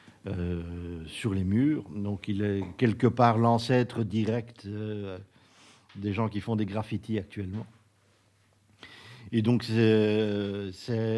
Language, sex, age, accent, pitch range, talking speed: French, male, 50-69, French, 100-115 Hz, 125 wpm